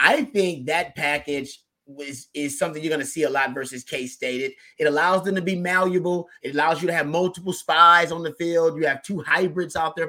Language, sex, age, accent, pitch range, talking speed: English, male, 30-49, American, 145-180 Hz, 220 wpm